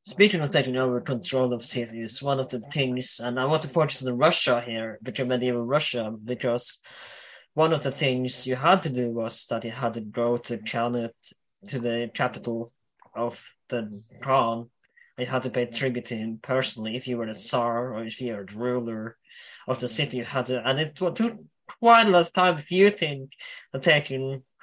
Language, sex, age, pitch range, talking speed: English, male, 20-39, 120-145 Hz, 200 wpm